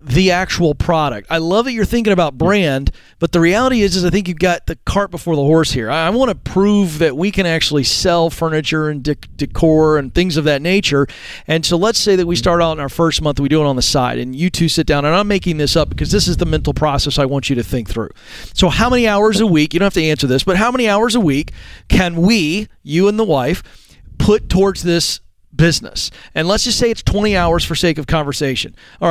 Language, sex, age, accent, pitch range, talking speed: English, male, 40-59, American, 145-195 Hz, 255 wpm